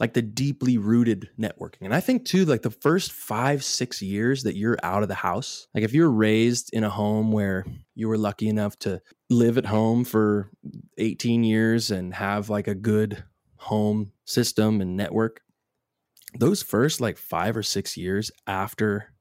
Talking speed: 180 wpm